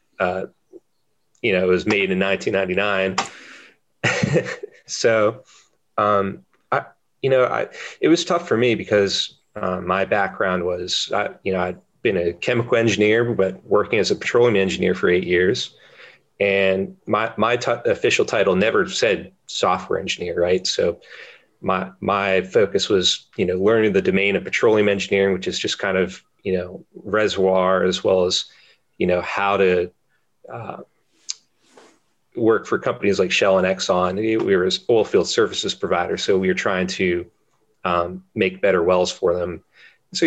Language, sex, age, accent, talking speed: English, male, 30-49, American, 160 wpm